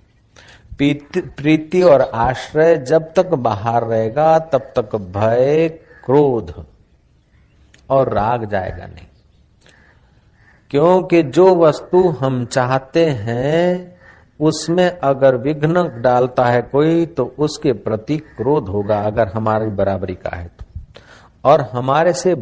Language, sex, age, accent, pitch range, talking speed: Hindi, male, 50-69, native, 110-160 Hz, 110 wpm